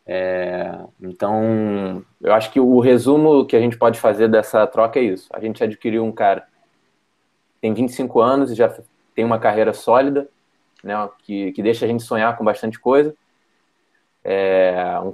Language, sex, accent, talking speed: Portuguese, male, Brazilian, 170 wpm